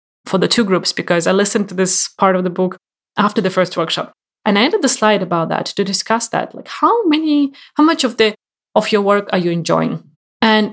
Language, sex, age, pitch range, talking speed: English, female, 20-39, 185-240 Hz, 230 wpm